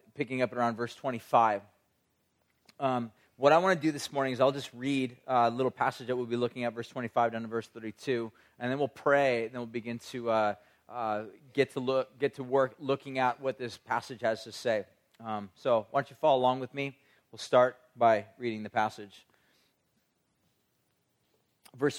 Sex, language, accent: male, English, American